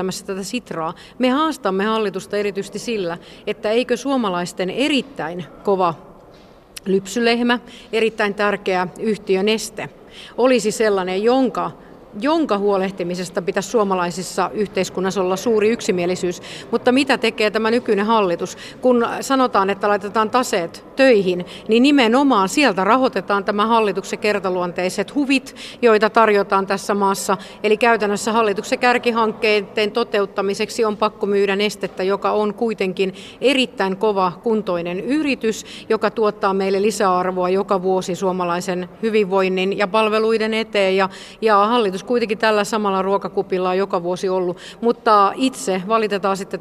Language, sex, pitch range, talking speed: Finnish, female, 190-225 Hz, 120 wpm